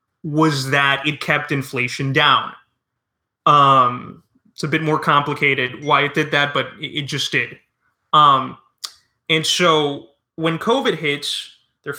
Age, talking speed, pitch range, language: 20-39, 140 wpm, 140-170 Hz, English